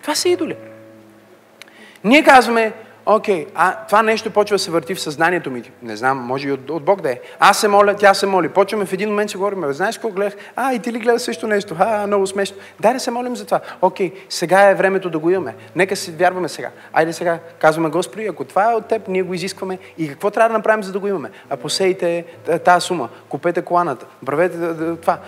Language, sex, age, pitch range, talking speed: Bulgarian, male, 30-49, 170-250 Hz, 230 wpm